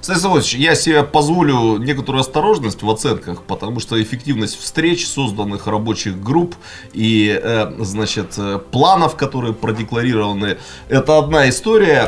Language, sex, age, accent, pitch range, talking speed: Russian, male, 30-49, native, 110-155 Hz, 110 wpm